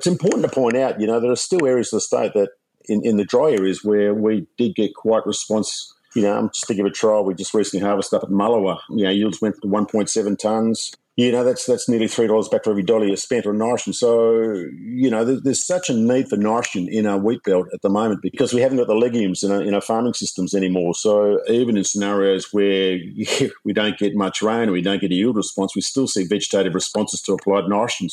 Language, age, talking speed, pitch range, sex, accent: English, 50-69, 250 wpm, 100-120 Hz, male, Australian